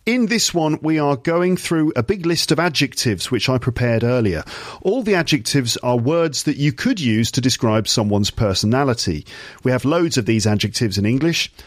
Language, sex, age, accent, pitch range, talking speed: English, male, 40-59, British, 110-150 Hz, 190 wpm